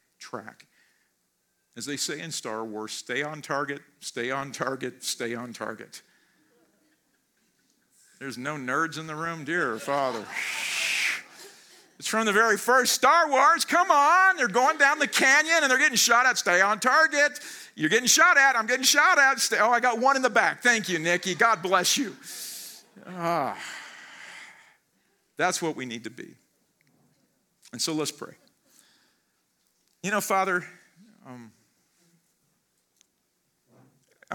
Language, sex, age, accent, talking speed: English, male, 50-69, American, 140 wpm